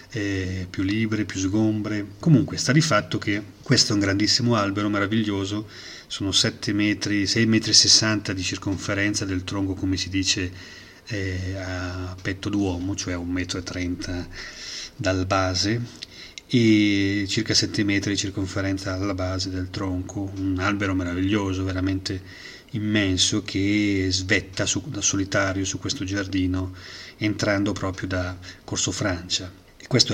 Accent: native